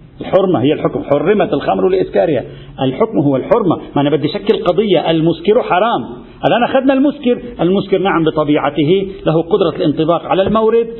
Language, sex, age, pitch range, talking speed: Arabic, male, 50-69, 150-210 Hz, 145 wpm